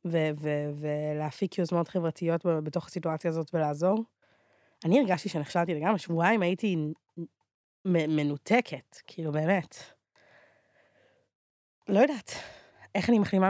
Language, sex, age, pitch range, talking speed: Hebrew, female, 20-39, 165-205 Hz, 100 wpm